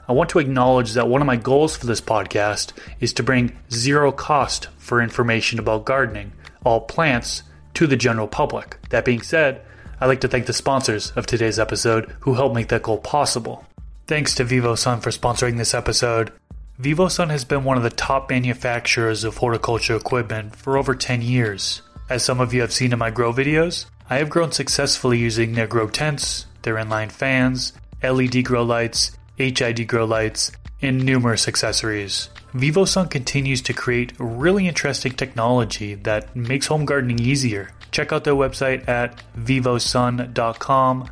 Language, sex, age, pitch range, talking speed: English, male, 20-39, 115-130 Hz, 170 wpm